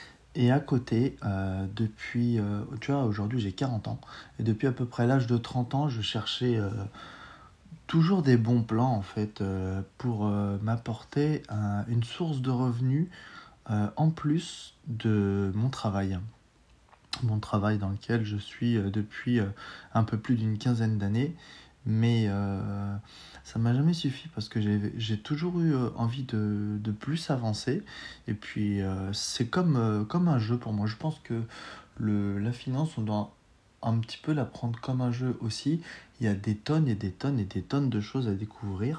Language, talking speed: French, 185 wpm